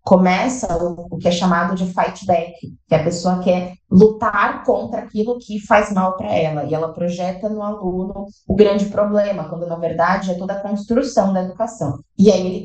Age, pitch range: 20-39, 175-210 Hz